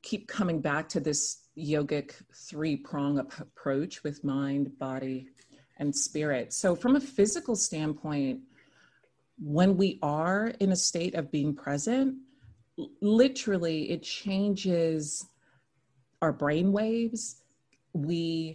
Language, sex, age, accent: English, female, 30-49, American